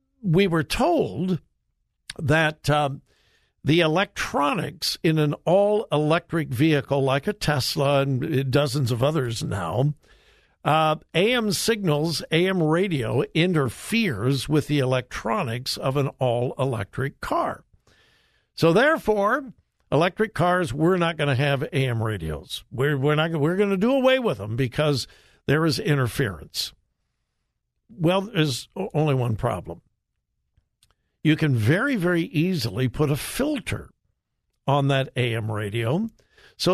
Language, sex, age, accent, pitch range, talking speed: English, male, 60-79, American, 130-170 Hz, 120 wpm